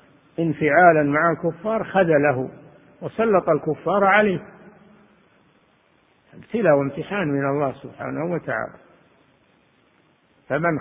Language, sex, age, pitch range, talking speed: Arabic, male, 50-69, 140-170 Hz, 85 wpm